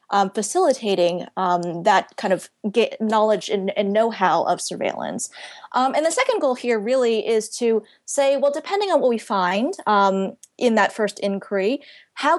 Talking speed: 175 wpm